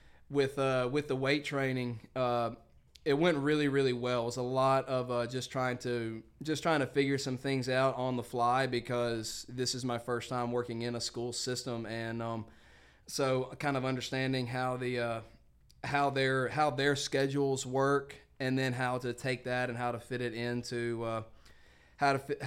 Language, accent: English, American